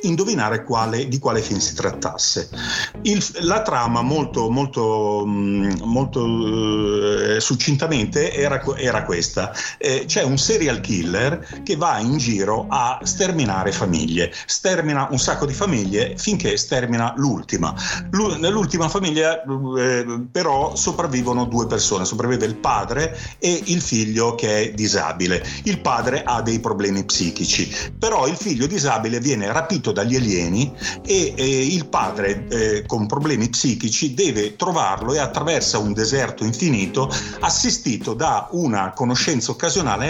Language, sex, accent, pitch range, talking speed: English, male, Italian, 105-150 Hz, 125 wpm